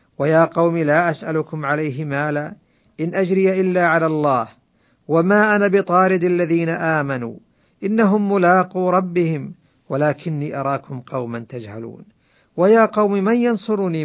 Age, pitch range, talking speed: 50-69, 130-175 Hz, 115 wpm